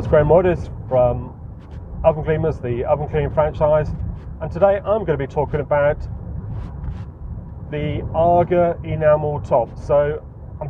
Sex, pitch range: male, 105-145 Hz